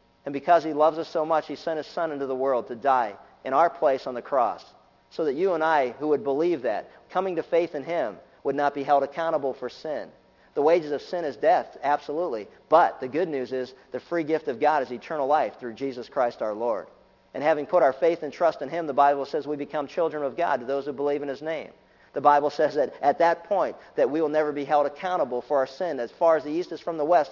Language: English